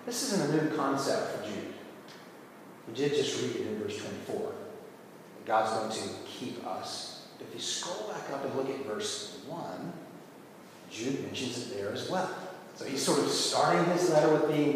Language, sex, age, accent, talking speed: English, male, 40-59, American, 185 wpm